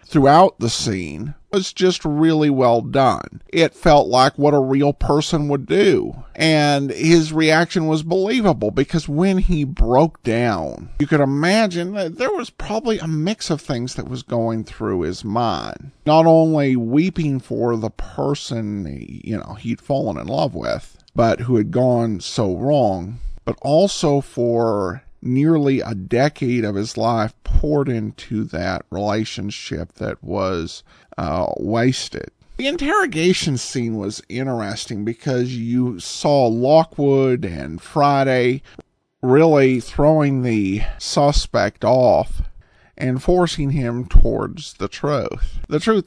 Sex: male